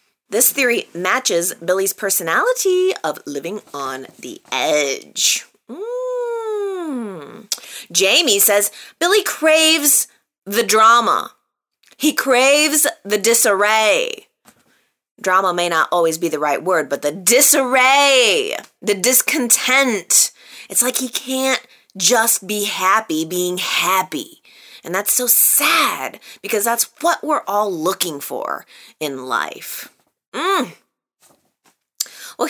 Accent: American